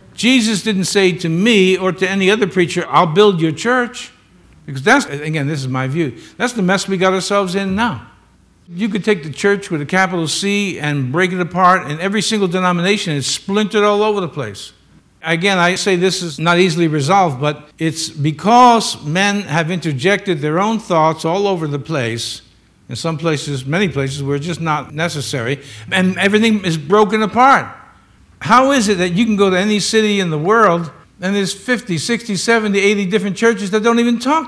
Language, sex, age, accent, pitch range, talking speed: English, male, 60-79, American, 150-200 Hz, 195 wpm